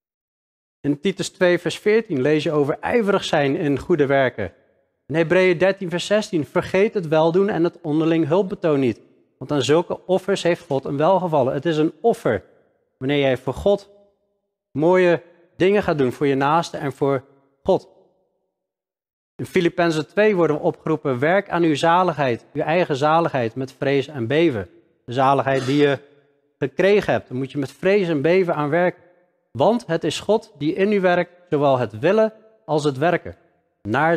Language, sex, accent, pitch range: Dutch, male, Dutch, 135-175 Hz